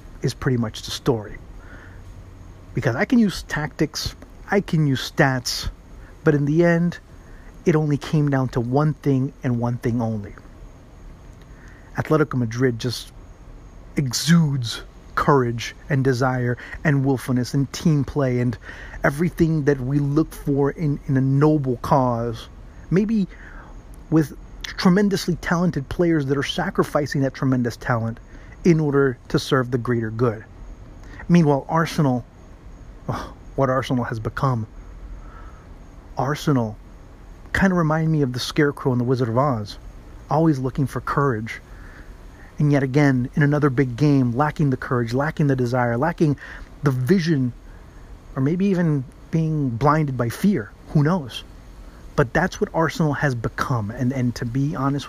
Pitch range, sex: 115-150 Hz, male